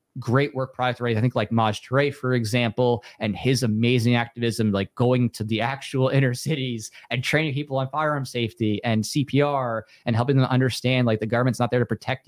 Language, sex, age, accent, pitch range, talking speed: English, male, 20-39, American, 115-130 Hz, 200 wpm